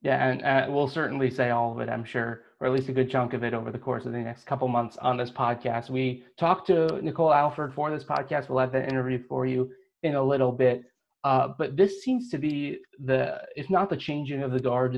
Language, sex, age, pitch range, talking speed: English, male, 30-49, 120-135 Hz, 250 wpm